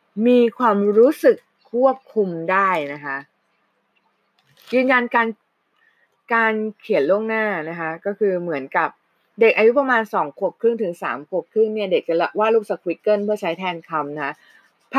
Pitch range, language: 165-225 Hz, Thai